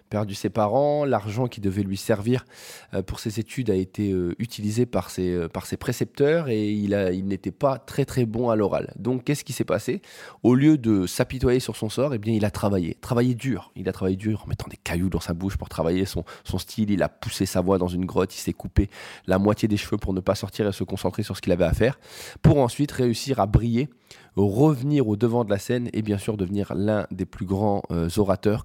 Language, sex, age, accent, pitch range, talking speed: French, male, 20-39, French, 95-120 Hz, 240 wpm